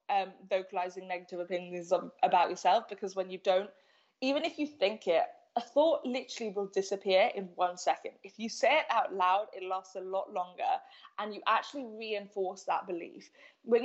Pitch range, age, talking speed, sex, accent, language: 195-250 Hz, 20-39, 180 wpm, female, British, English